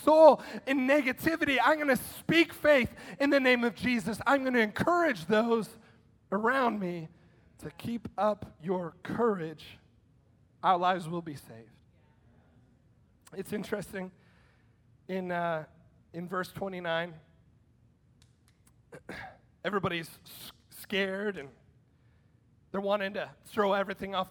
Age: 30-49